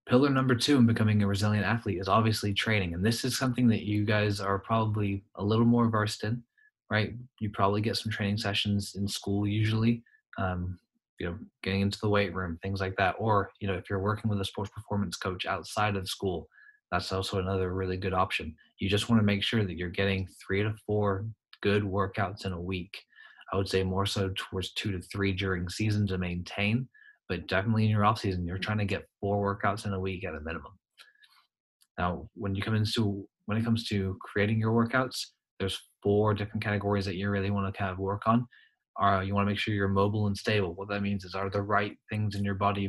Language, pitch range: English, 95-105 Hz